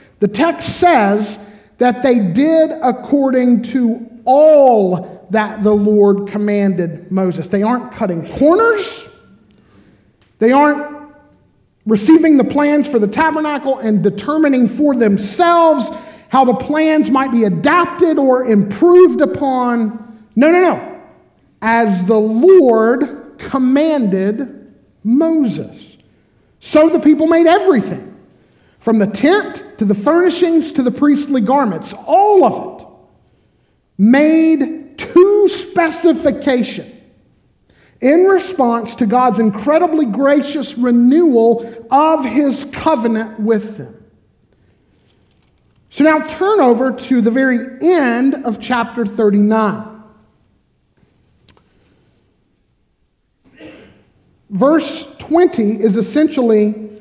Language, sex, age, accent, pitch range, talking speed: English, male, 50-69, American, 220-310 Hz, 100 wpm